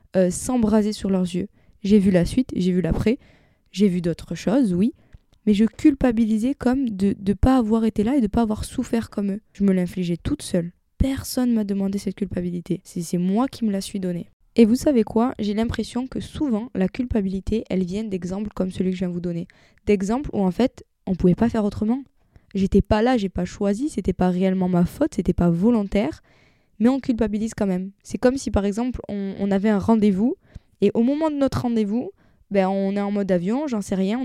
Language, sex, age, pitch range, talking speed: French, female, 20-39, 190-230 Hz, 230 wpm